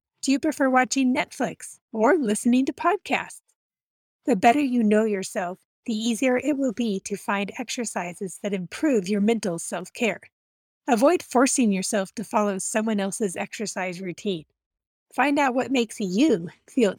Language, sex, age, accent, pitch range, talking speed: English, female, 30-49, American, 200-255 Hz, 145 wpm